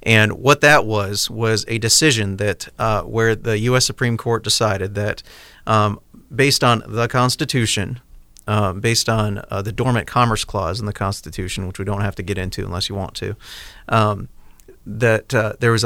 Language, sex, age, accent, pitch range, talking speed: English, male, 40-59, American, 105-120 Hz, 180 wpm